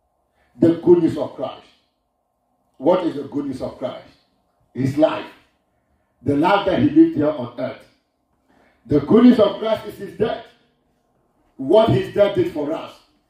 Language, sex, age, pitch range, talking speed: English, male, 50-69, 175-265 Hz, 150 wpm